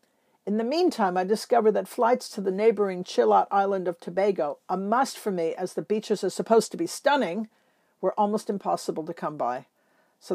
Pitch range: 180-230 Hz